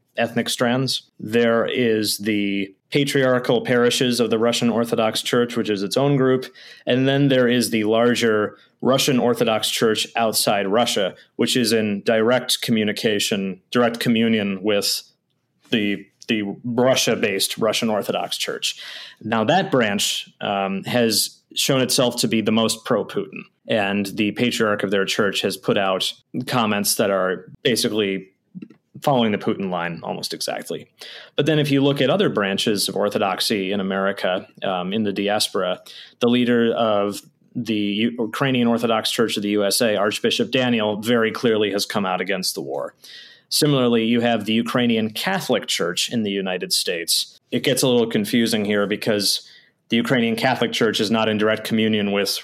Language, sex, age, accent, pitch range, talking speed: English, male, 30-49, American, 105-125 Hz, 155 wpm